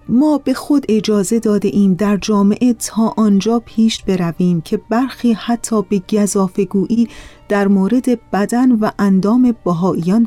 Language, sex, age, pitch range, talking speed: Persian, female, 30-49, 185-235 Hz, 135 wpm